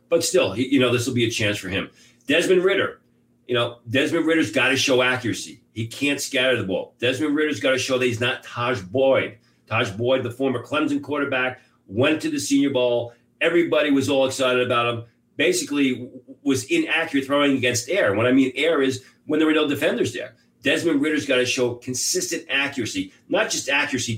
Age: 40-59